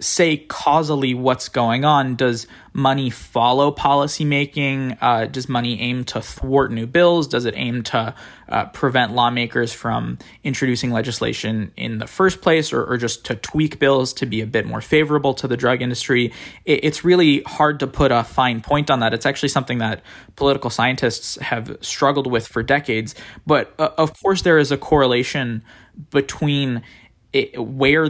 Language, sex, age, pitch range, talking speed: English, male, 20-39, 115-140 Hz, 165 wpm